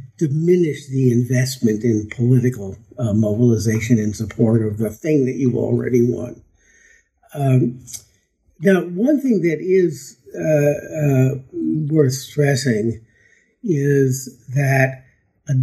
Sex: male